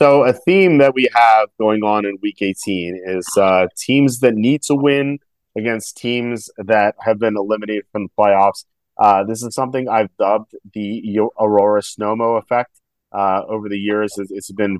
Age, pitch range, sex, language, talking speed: 30-49, 95-115 Hz, male, English, 175 wpm